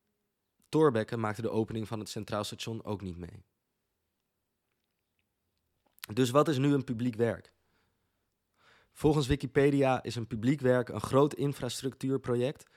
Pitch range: 100-130 Hz